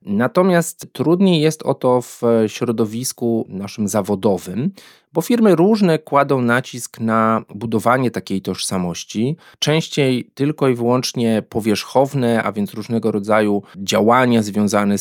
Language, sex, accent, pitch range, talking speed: Polish, male, native, 110-140 Hz, 115 wpm